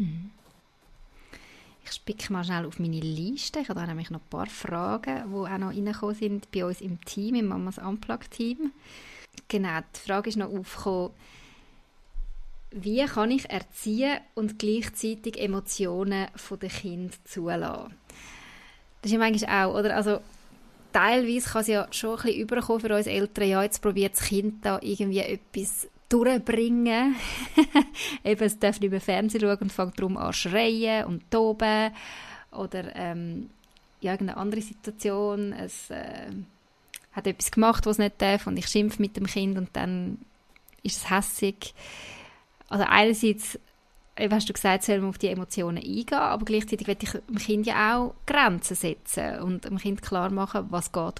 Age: 20-39